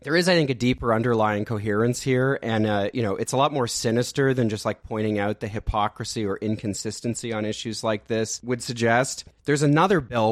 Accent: American